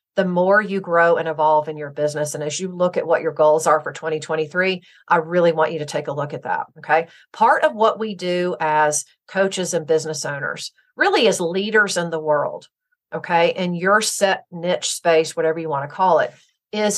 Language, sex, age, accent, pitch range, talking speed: English, female, 40-59, American, 155-200 Hz, 210 wpm